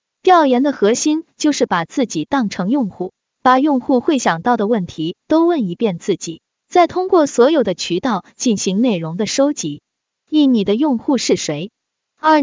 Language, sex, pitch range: Chinese, female, 200-295 Hz